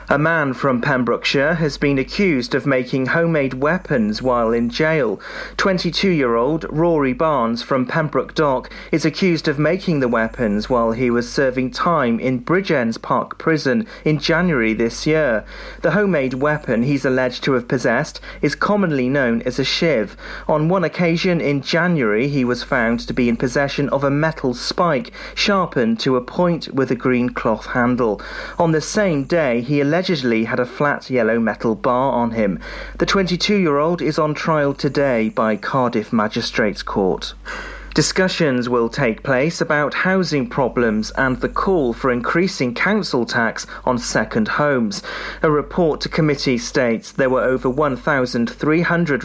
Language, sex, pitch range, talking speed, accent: English, male, 125-165 Hz, 160 wpm, British